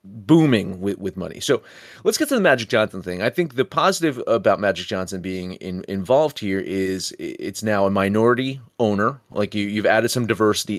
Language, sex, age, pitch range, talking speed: English, male, 30-49, 110-160 Hz, 195 wpm